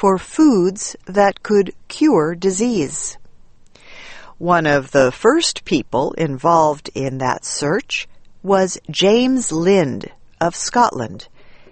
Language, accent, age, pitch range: English, American, 50-69, 170-240 Hz